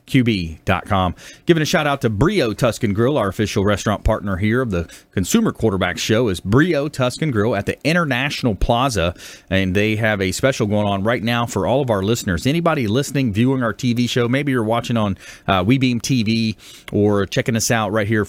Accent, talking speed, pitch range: American, 195 wpm, 100-130 Hz